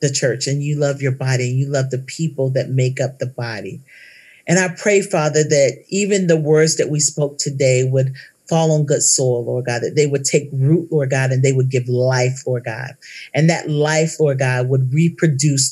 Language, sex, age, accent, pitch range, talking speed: English, male, 40-59, American, 135-180 Hz, 220 wpm